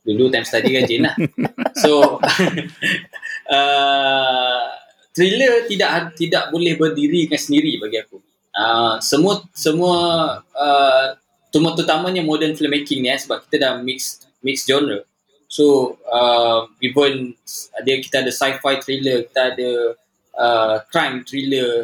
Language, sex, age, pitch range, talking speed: Malay, male, 20-39, 120-155 Hz, 125 wpm